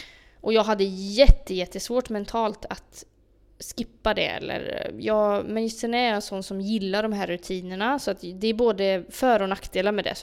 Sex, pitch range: female, 190-235 Hz